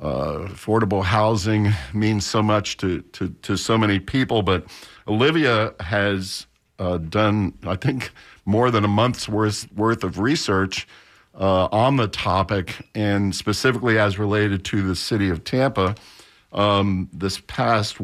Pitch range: 95-115 Hz